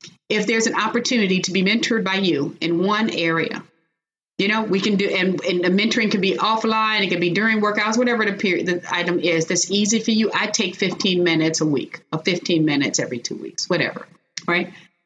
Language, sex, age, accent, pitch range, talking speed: English, female, 30-49, American, 175-225 Hz, 210 wpm